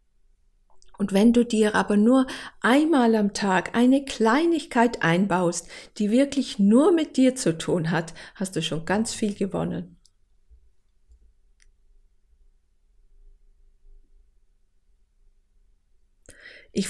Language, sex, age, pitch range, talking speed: German, female, 50-69, 165-230 Hz, 95 wpm